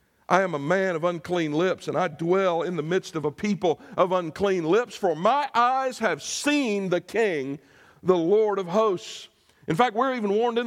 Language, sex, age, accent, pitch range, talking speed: English, male, 60-79, American, 165-220 Hz, 200 wpm